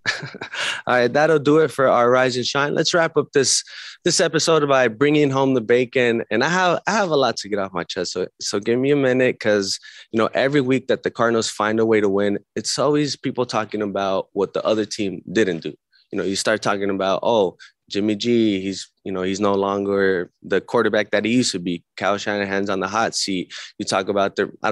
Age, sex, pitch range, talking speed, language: 20-39, male, 100-130 Hz, 235 wpm, English